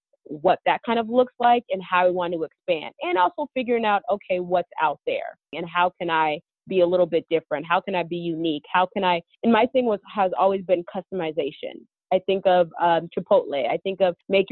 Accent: American